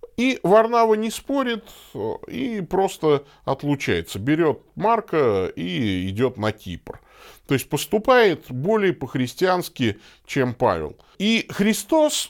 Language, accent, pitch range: Russian, native, 140-210 Hz